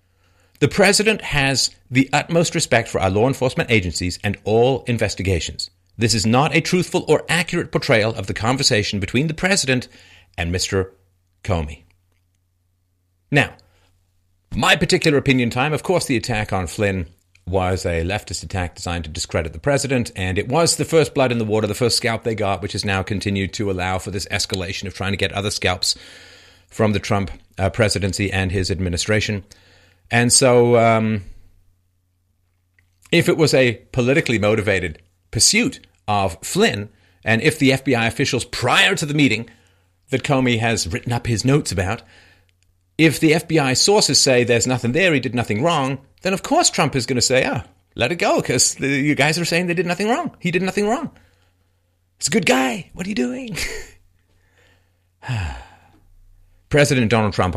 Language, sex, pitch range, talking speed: English, male, 90-135 Hz, 170 wpm